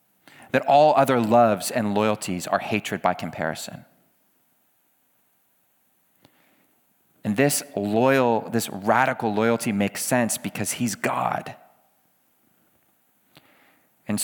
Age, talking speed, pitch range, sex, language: 40-59, 95 wpm, 100-130 Hz, male, English